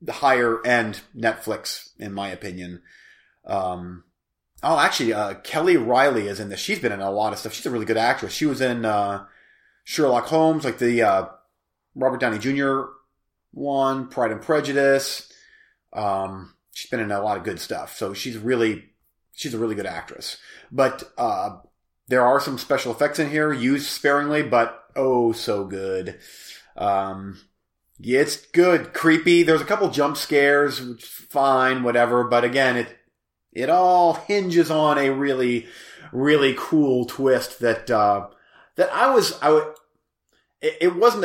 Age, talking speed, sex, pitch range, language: 30-49, 160 wpm, male, 115-150 Hz, English